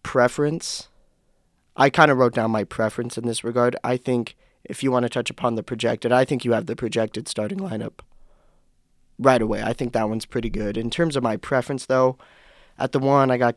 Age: 20-39